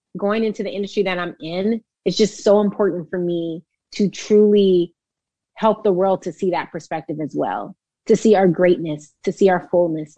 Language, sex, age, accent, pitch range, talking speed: English, female, 30-49, American, 190-245 Hz, 190 wpm